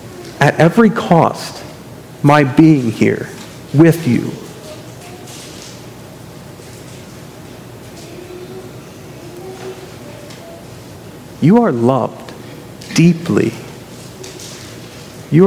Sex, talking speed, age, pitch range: male, 50 wpm, 40-59, 120-155 Hz